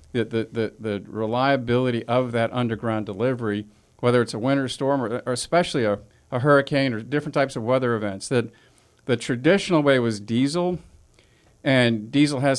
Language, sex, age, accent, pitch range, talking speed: English, male, 50-69, American, 115-135 Hz, 160 wpm